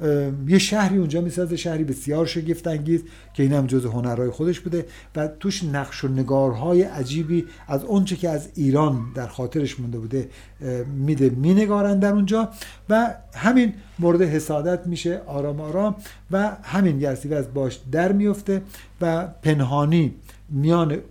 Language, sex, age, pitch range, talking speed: Persian, male, 50-69, 130-170 Hz, 140 wpm